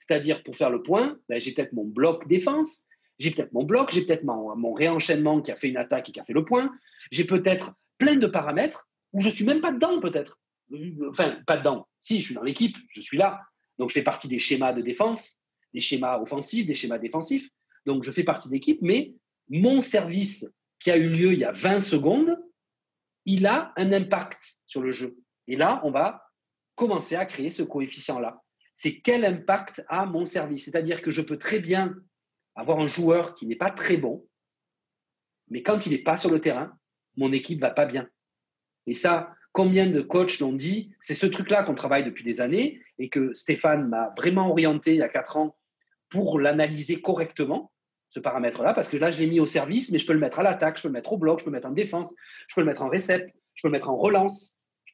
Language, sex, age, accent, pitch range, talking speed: French, male, 40-59, French, 150-200 Hz, 225 wpm